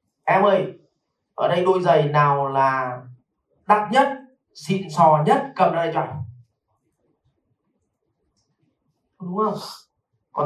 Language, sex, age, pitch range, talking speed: Vietnamese, male, 30-49, 130-190 Hz, 115 wpm